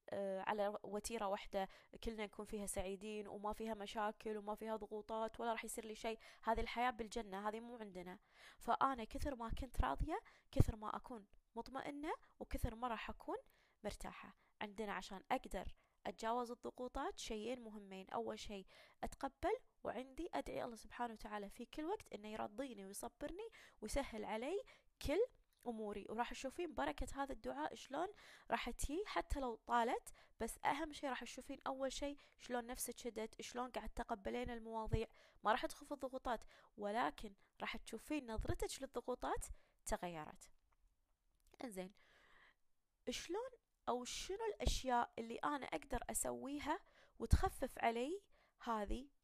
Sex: female